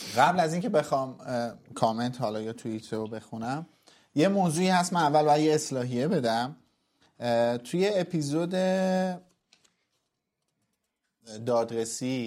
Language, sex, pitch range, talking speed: Persian, male, 120-150 Hz, 110 wpm